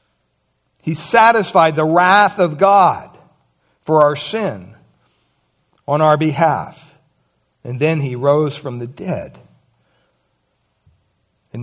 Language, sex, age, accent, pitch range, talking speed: English, male, 60-79, American, 135-195 Hz, 105 wpm